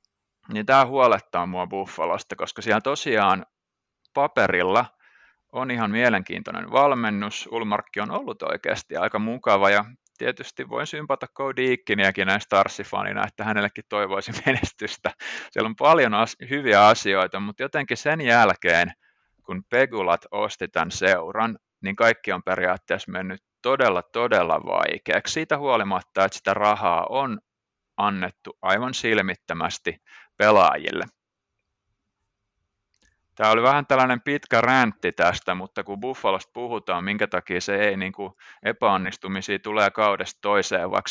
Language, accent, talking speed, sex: Finnish, native, 120 wpm, male